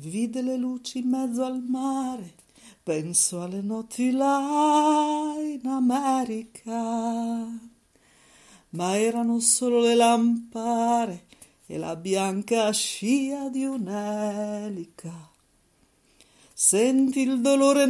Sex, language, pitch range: female, Italian, 230-295 Hz